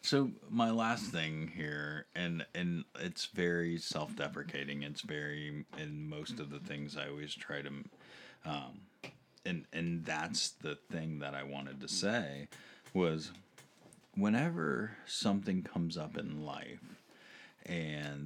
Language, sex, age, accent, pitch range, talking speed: English, male, 40-59, American, 75-100 Hz, 135 wpm